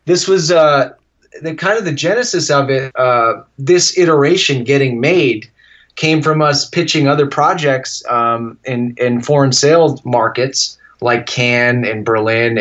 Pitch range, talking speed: 120-155 Hz, 150 wpm